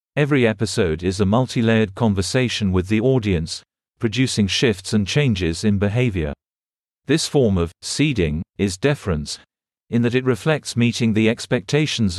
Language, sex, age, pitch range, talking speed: English, male, 40-59, 95-125 Hz, 140 wpm